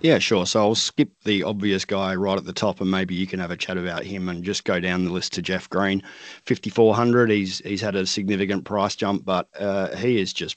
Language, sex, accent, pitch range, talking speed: English, male, Australian, 90-105 Hz, 245 wpm